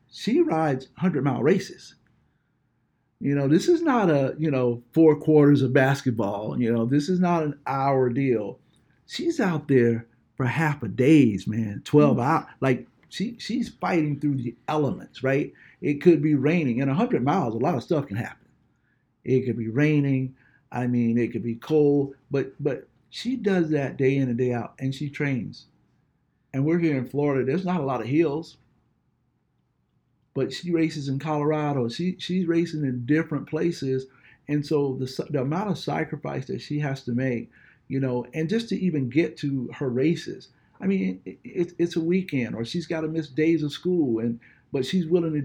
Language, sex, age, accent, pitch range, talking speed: English, male, 50-69, American, 130-160 Hz, 185 wpm